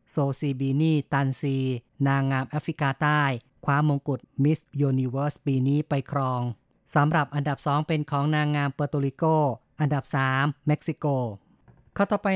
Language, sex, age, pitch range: Thai, female, 30-49, 135-155 Hz